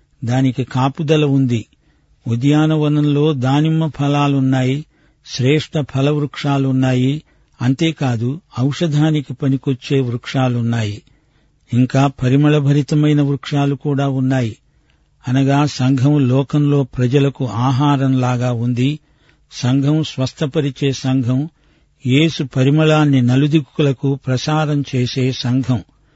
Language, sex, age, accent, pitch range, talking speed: Telugu, male, 50-69, native, 130-150 Hz, 75 wpm